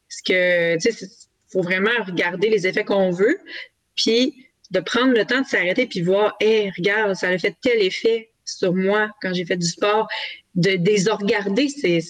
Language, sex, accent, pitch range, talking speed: French, female, Canadian, 175-220 Hz, 185 wpm